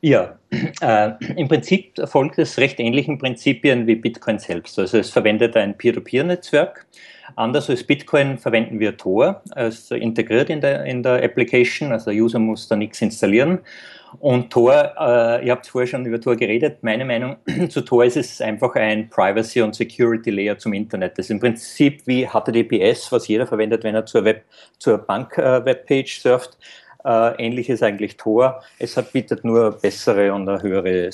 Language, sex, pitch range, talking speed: German, male, 110-140 Hz, 170 wpm